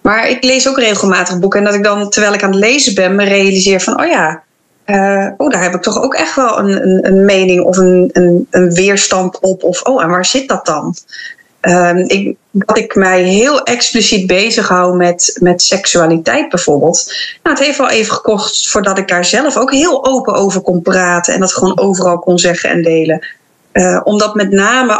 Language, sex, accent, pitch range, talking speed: Dutch, female, Dutch, 180-240 Hz, 205 wpm